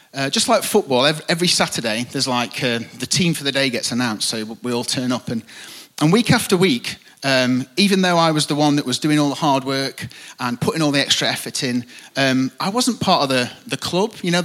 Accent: British